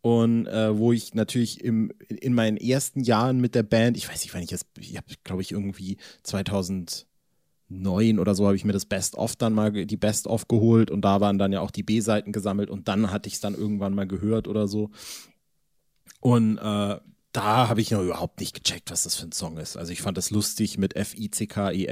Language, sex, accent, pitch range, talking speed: German, male, German, 100-130 Hz, 235 wpm